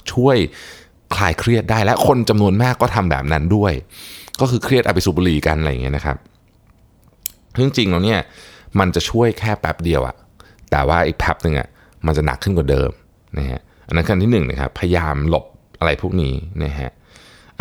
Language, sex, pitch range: Thai, male, 80-110 Hz